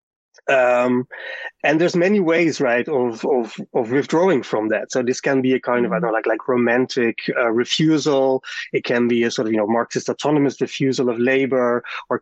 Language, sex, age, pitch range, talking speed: English, male, 20-39, 115-135 Hz, 195 wpm